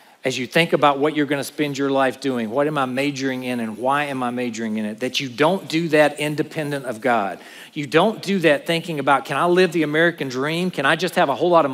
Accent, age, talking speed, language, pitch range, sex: American, 40-59, 260 wpm, English, 165-230 Hz, male